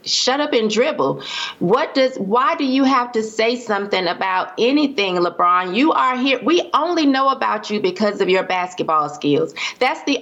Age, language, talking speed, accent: 30-49, English, 180 wpm, American